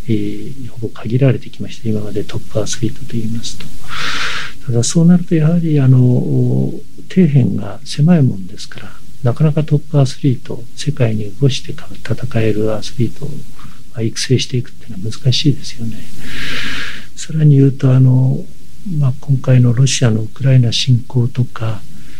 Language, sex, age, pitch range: Japanese, male, 60-79, 115-145 Hz